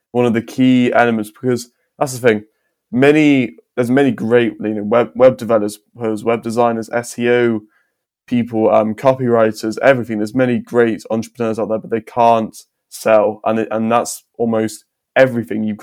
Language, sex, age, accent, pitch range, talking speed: English, male, 20-39, British, 110-120 Hz, 155 wpm